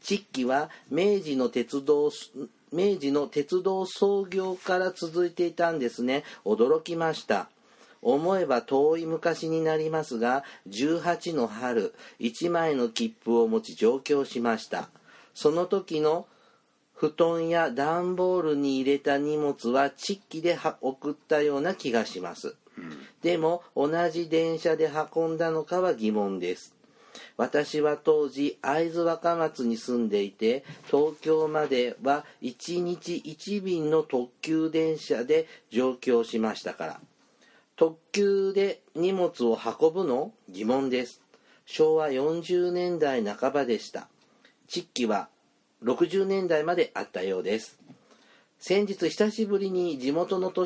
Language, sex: Japanese, male